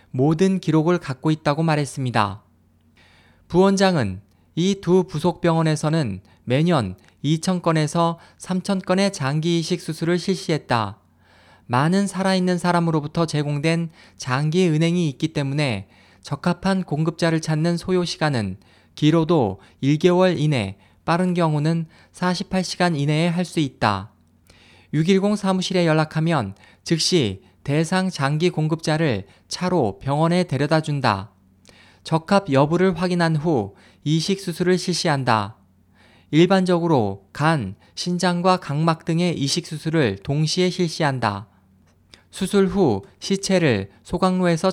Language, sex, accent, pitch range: Korean, male, native, 110-180 Hz